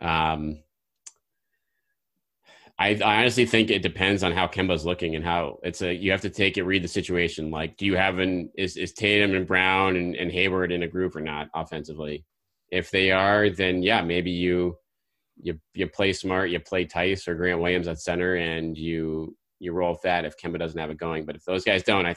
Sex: male